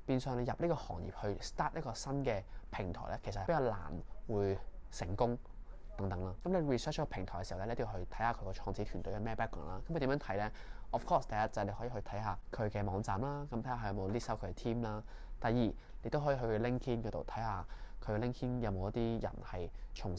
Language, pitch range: Chinese, 95-120 Hz